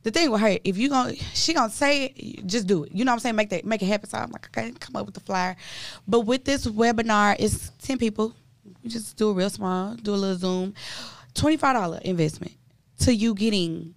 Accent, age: American, 20-39